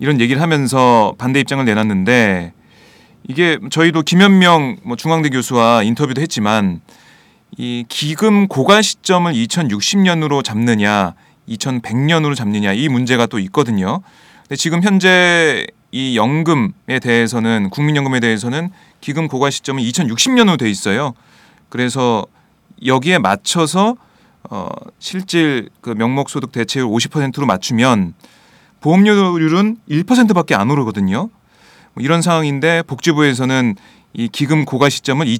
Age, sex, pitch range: 30-49, male, 120-180 Hz